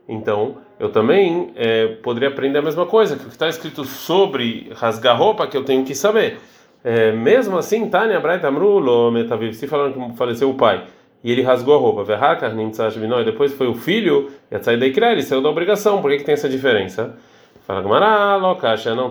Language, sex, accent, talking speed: Portuguese, male, Brazilian, 200 wpm